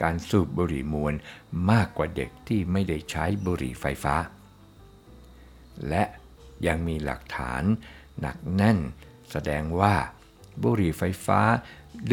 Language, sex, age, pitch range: Thai, male, 60-79, 75-110 Hz